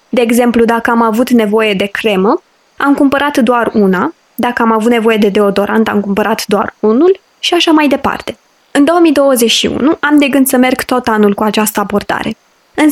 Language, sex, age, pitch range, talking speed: Romanian, female, 20-39, 215-280 Hz, 180 wpm